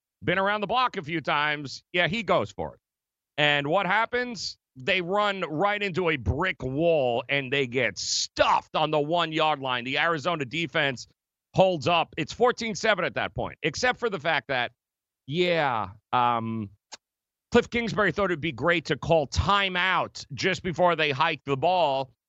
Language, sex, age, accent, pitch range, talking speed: English, male, 40-59, American, 135-175 Hz, 170 wpm